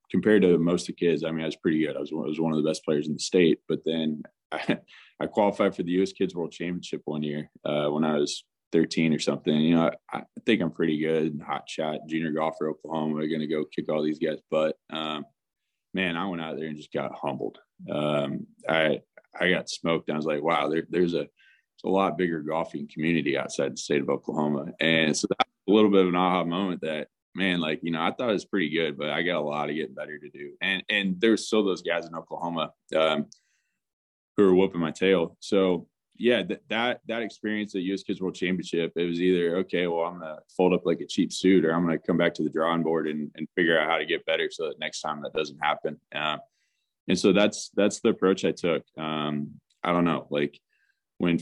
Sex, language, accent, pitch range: male, English, American, 75-90 Hz